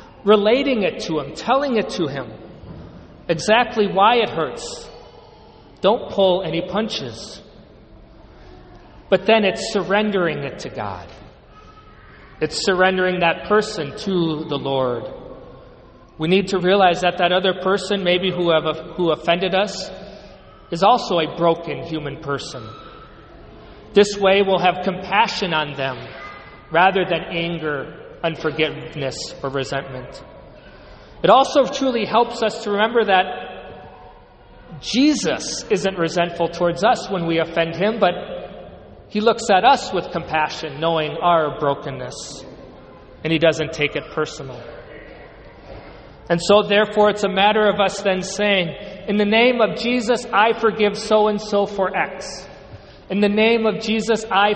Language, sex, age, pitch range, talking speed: English, male, 40-59, 165-210 Hz, 135 wpm